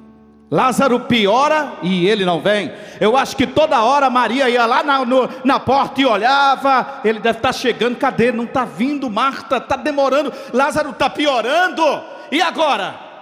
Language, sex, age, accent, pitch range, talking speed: Portuguese, male, 50-69, Brazilian, 235-295 Hz, 165 wpm